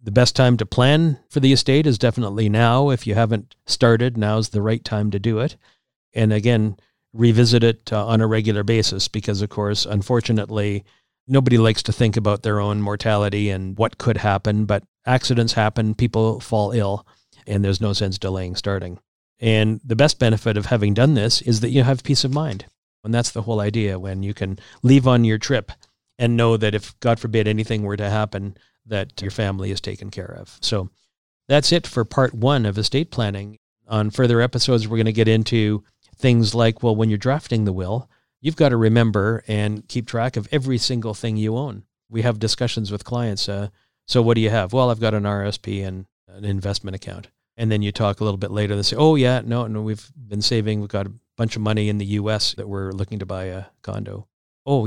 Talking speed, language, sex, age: 210 wpm, English, male, 50-69